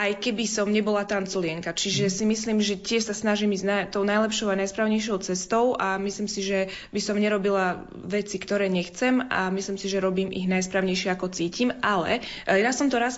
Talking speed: 190 wpm